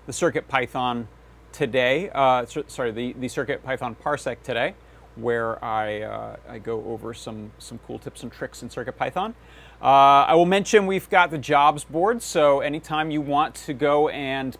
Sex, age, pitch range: male, 30-49, 120-155 Hz